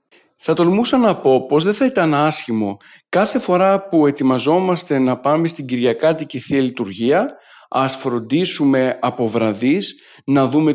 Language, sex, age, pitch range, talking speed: Greek, male, 50-69, 130-165 Hz, 140 wpm